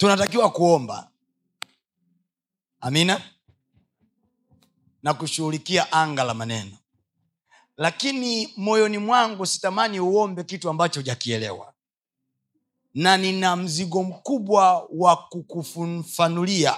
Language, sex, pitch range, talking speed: Swahili, male, 125-190 Hz, 80 wpm